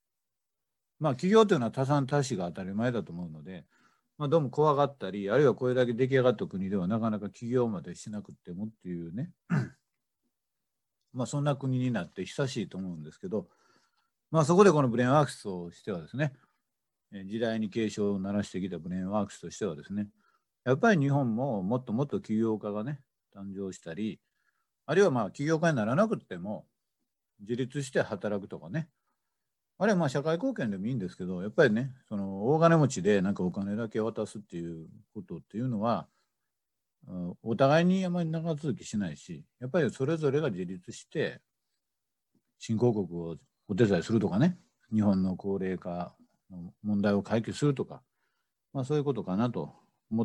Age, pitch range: 50-69, 100-145 Hz